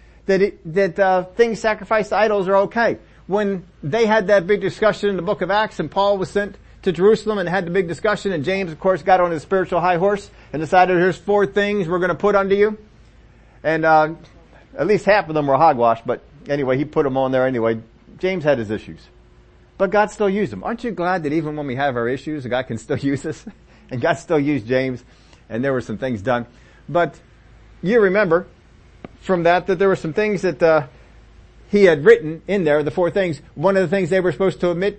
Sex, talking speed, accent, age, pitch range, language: male, 230 wpm, American, 50-69, 140-200 Hz, English